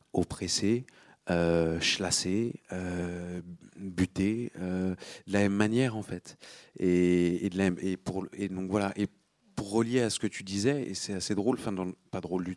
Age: 40-59